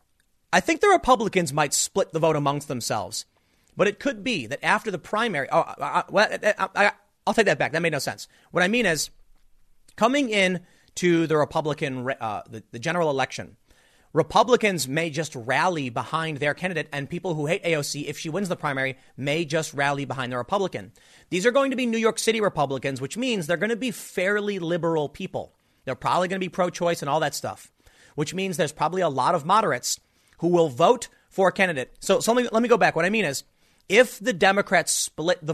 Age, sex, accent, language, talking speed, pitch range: 30-49, male, American, English, 205 wpm, 145-195 Hz